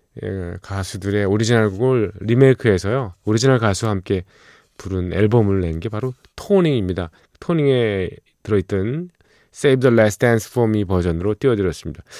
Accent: native